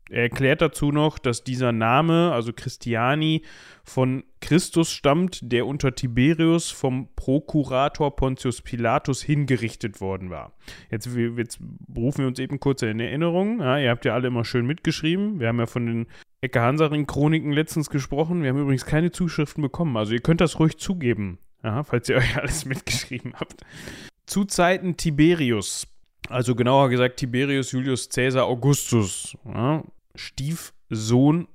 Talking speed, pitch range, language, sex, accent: 150 wpm, 115-150 Hz, German, male, German